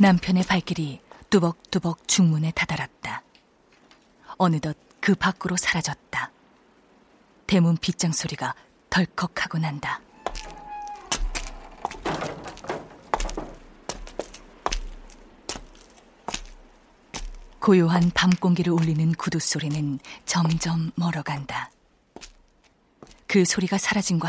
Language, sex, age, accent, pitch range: Korean, female, 30-49, native, 155-185 Hz